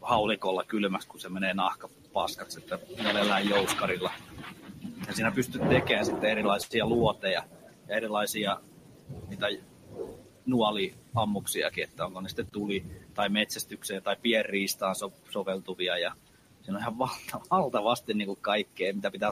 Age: 30-49